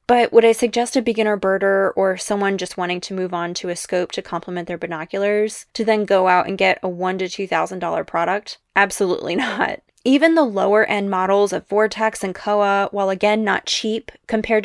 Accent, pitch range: American, 195-245 Hz